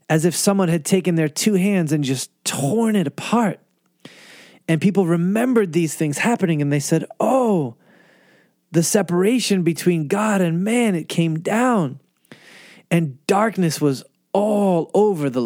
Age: 30-49